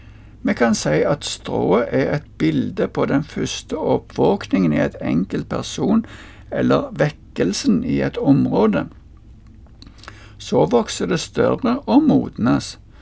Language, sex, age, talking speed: Danish, male, 60-79, 130 wpm